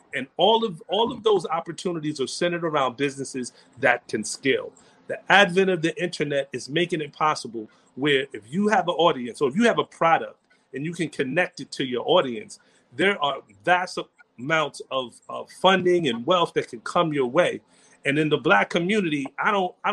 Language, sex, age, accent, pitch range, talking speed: English, male, 30-49, American, 145-195 Hz, 195 wpm